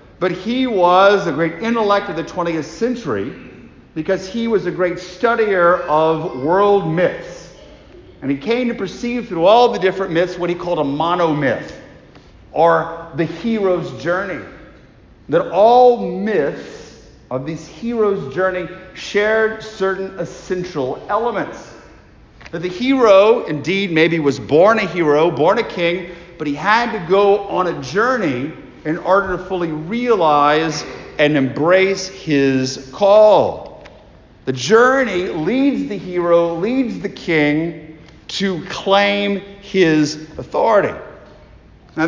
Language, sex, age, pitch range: English, male, 50-69, 160-205 Hz